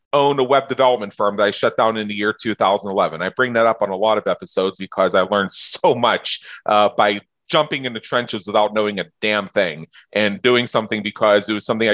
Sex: male